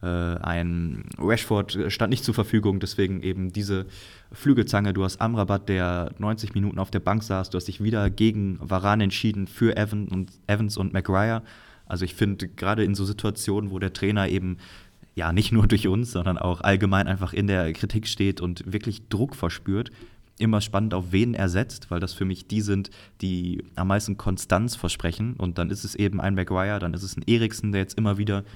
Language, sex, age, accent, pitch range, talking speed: German, male, 20-39, German, 95-110 Hz, 195 wpm